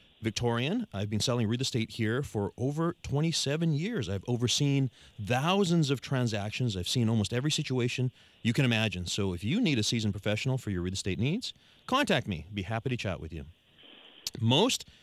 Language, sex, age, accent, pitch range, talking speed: English, male, 40-59, American, 105-150 Hz, 185 wpm